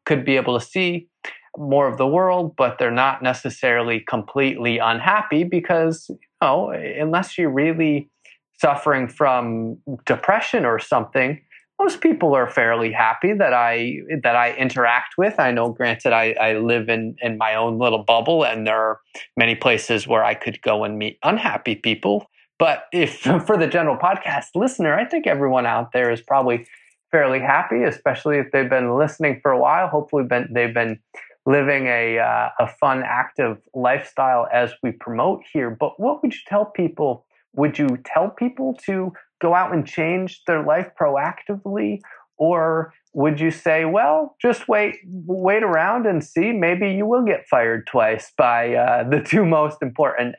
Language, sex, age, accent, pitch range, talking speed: English, male, 20-39, American, 120-170 Hz, 165 wpm